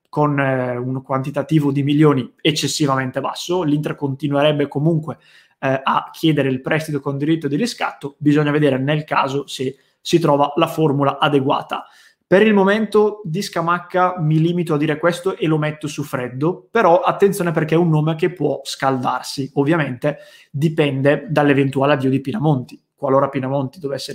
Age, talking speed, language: 20-39, 155 wpm, Italian